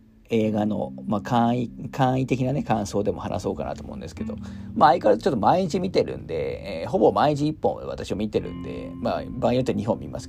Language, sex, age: Japanese, male, 40-59